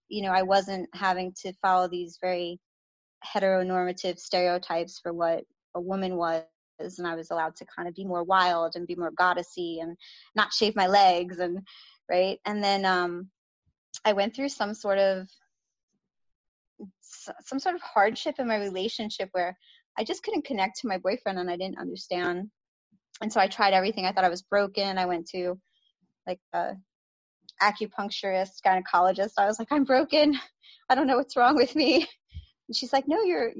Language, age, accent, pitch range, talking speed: English, 20-39, American, 185-245 Hz, 175 wpm